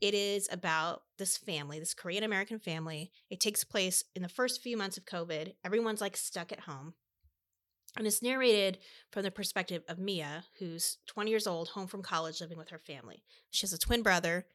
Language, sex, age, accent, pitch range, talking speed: English, female, 30-49, American, 160-200 Hz, 200 wpm